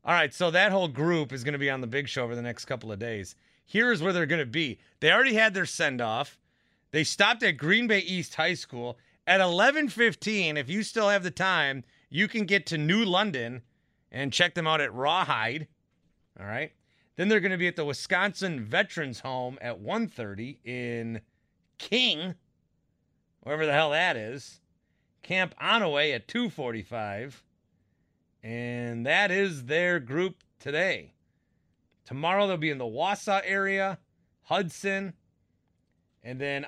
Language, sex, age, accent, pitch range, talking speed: English, male, 30-49, American, 120-190 Hz, 165 wpm